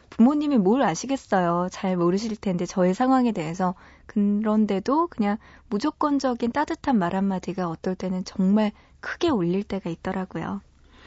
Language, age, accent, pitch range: Korean, 20-39, native, 185-245 Hz